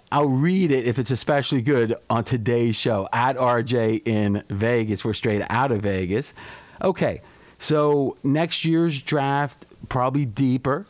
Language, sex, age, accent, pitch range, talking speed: English, male, 40-59, American, 110-135 Hz, 145 wpm